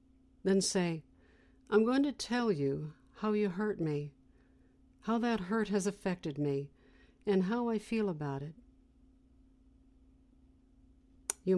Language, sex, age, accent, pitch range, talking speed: English, female, 60-79, American, 165-215 Hz, 125 wpm